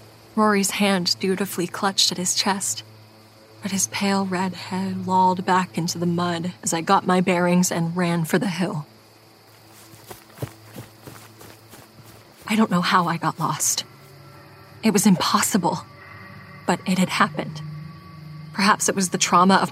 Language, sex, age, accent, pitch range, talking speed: English, female, 30-49, American, 155-190 Hz, 145 wpm